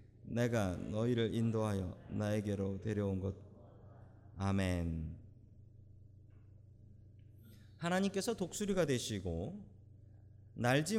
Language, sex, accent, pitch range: Korean, male, native, 105-140 Hz